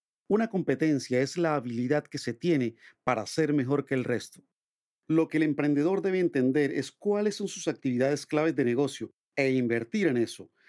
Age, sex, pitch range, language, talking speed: 40-59, male, 130-170 Hz, Spanish, 180 wpm